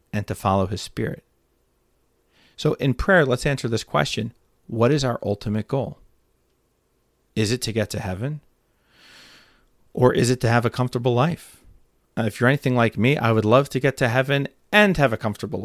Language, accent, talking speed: English, American, 185 wpm